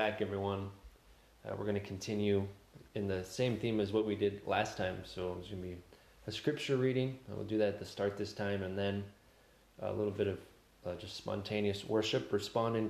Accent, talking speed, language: American, 210 wpm, English